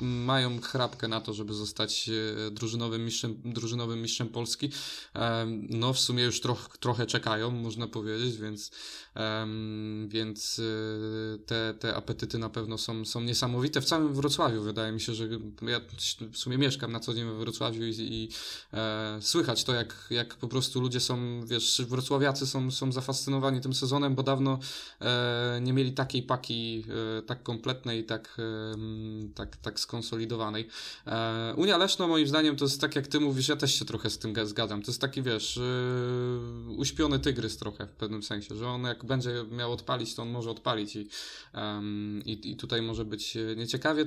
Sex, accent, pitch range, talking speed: male, native, 110-130 Hz, 160 wpm